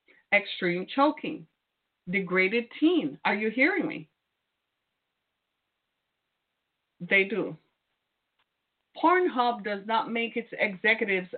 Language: English